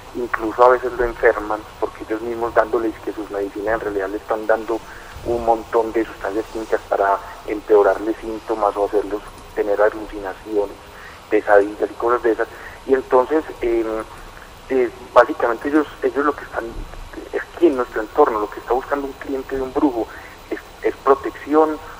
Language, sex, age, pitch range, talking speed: Spanish, male, 40-59, 105-130 Hz, 165 wpm